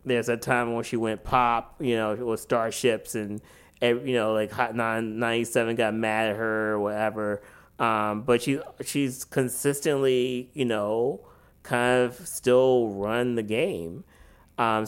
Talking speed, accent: 155 wpm, American